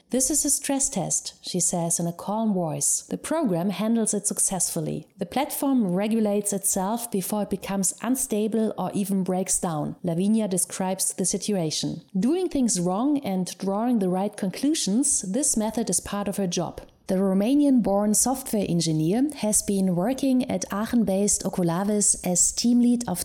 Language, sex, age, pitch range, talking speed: English, female, 30-49, 190-235 Hz, 155 wpm